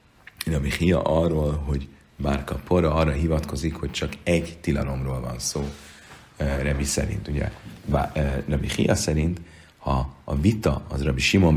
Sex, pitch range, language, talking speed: male, 70-90 Hz, Hungarian, 140 wpm